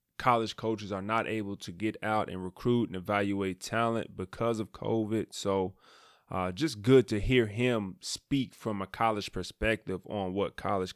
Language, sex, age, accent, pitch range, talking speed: English, male, 20-39, American, 100-120 Hz, 170 wpm